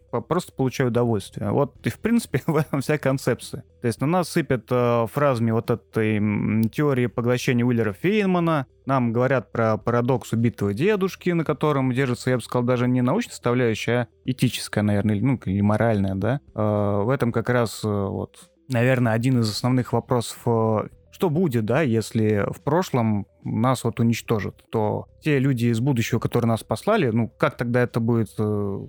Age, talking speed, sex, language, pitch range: 20-39, 170 wpm, male, Russian, 110-140 Hz